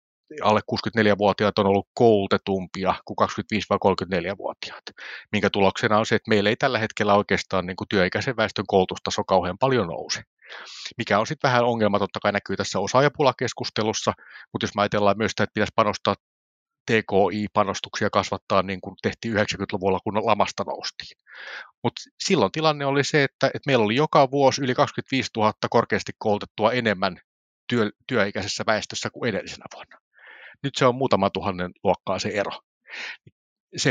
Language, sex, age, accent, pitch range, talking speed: Finnish, male, 30-49, native, 100-120 Hz, 140 wpm